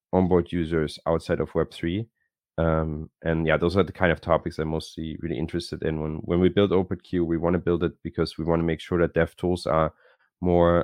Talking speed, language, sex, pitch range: 220 wpm, English, male, 80-85 Hz